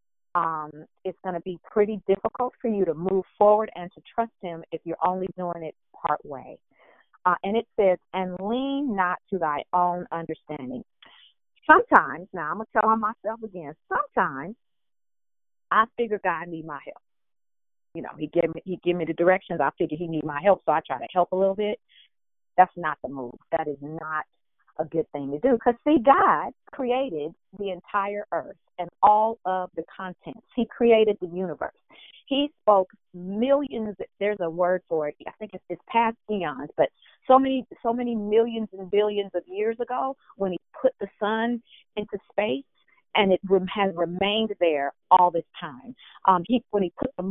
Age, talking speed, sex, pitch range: 40-59, 185 wpm, female, 175-230 Hz